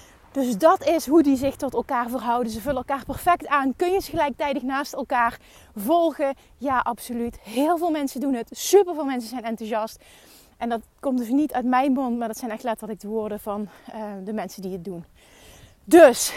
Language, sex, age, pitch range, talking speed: Dutch, female, 30-49, 235-285 Hz, 200 wpm